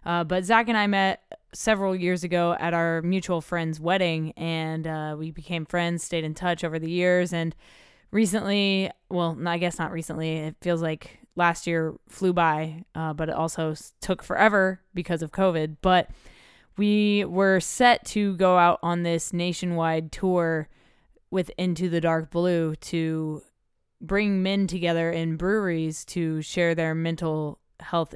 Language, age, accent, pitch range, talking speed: English, 10-29, American, 160-180 Hz, 160 wpm